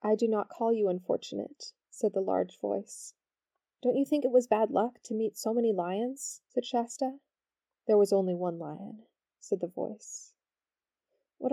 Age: 20-39